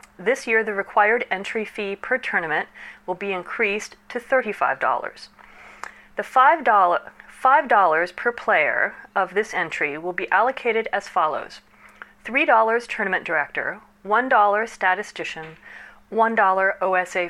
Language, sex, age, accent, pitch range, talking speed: English, female, 40-59, American, 170-215 Hz, 115 wpm